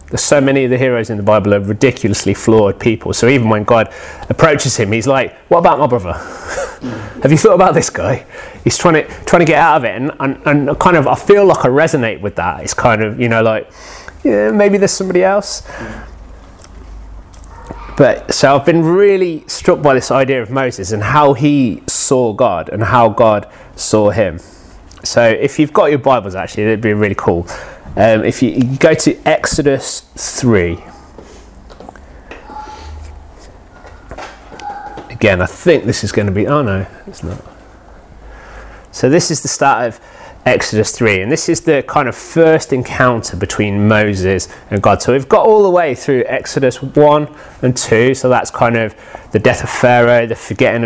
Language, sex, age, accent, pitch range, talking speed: English, male, 30-49, British, 105-145 Hz, 185 wpm